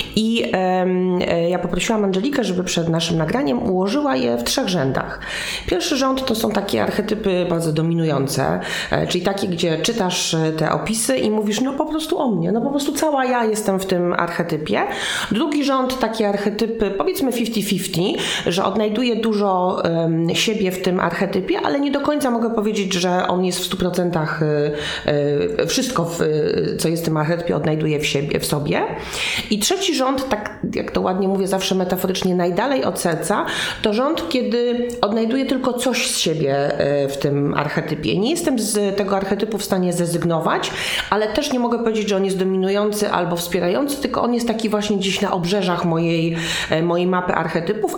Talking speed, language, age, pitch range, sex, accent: 170 wpm, Polish, 30-49, 170-225 Hz, female, native